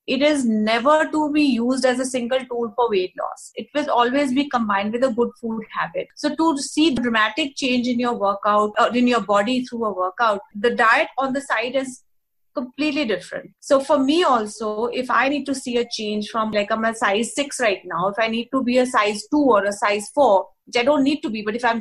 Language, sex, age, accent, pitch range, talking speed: English, female, 30-49, Indian, 220-280 Hz, 235 wpm